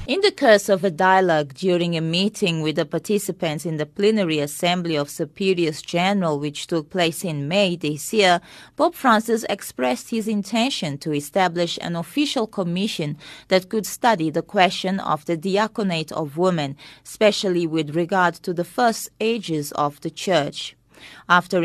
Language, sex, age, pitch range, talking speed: English, female, 30-49, 160-205 Hz, 160 wpm